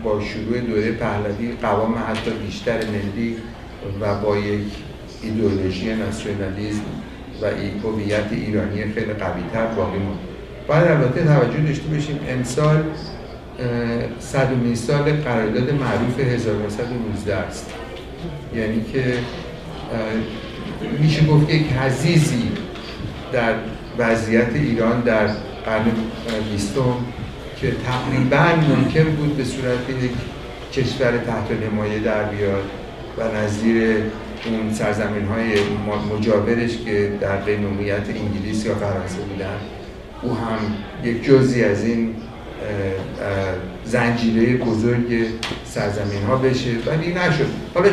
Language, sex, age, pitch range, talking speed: Persian, male, 50-69, 105-130 Hz, 105 wpm